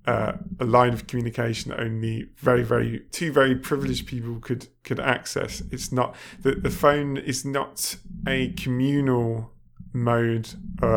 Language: English